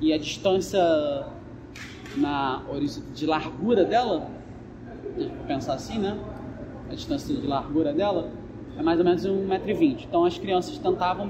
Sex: male